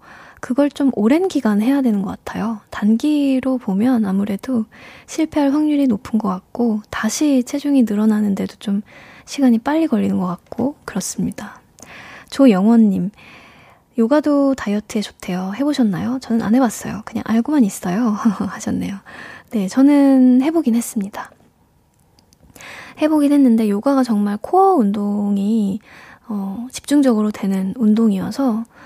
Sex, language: female, Korean